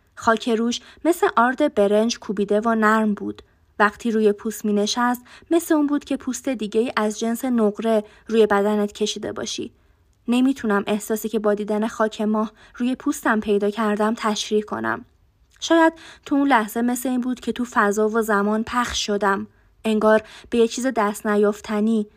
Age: 20-39